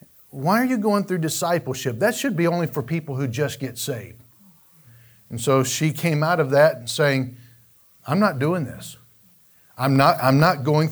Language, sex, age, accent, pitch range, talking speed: English, male, 50-69, American, 130-190 Hz, 185 wpm